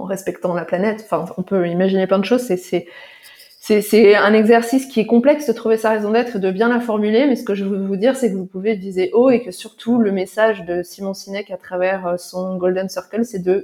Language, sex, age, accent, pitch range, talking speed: French, female, 20-39, French, 190-240 Hz, 235 wpm